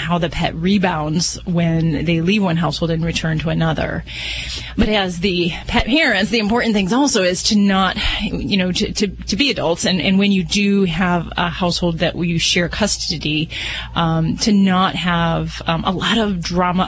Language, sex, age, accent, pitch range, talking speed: English, female, 30-49, American, 170-210 Hz, 190 wpm